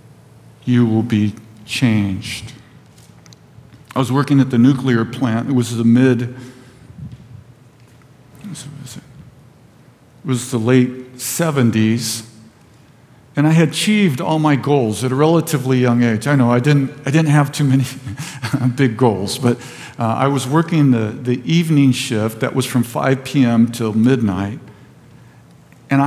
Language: English